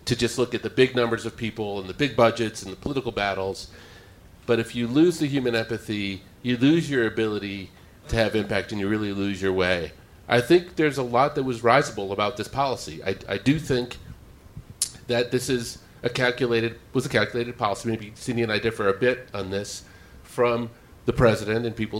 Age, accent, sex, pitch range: 40-59, American, male, 105-135 Hz